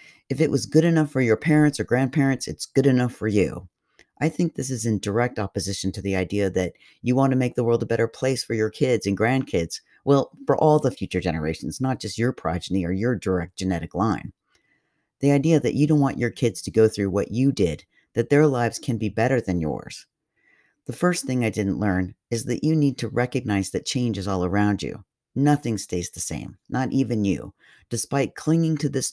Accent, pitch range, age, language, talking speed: American, 100-135 Hz, 50-69, English, 220 wpm